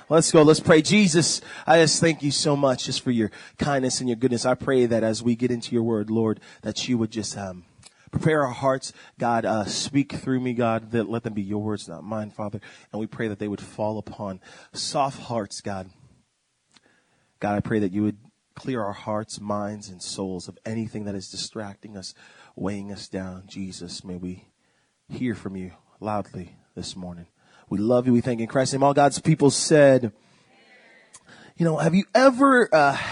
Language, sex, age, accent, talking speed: English, male, 30-49, American, 200 wpm